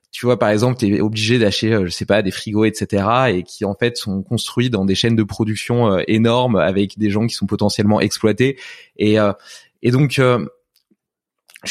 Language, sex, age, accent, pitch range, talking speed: French, male, 20-39, French, 105-130 Hz, 200 wpm